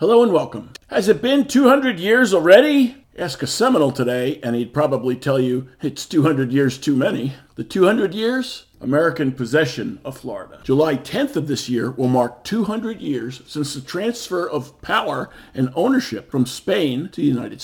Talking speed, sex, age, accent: 175 wpm, male, 50-69, American